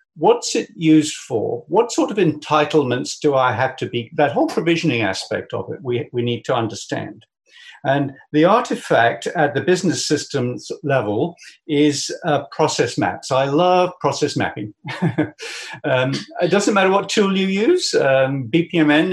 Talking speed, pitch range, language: 155 wpm, 130-175 Hz, English